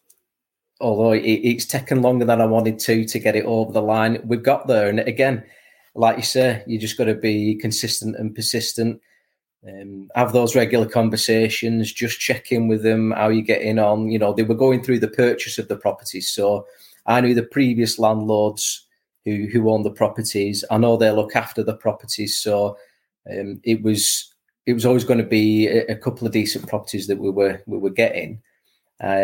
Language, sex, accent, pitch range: English, male, British, 105-120 Hz